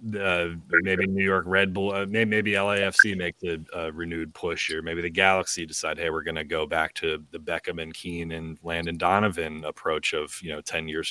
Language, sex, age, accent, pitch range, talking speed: English, male, 30-49, American, 80-100 Hz, 205 wpm